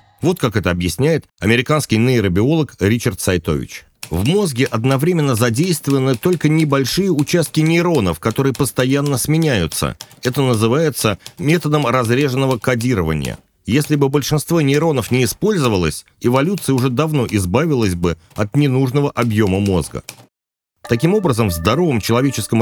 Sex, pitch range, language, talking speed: male, 100-145 Hz, Russian, 115 wpm